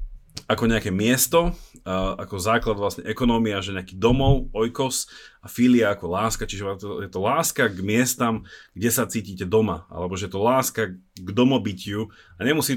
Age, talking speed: 30-49, 165 wpm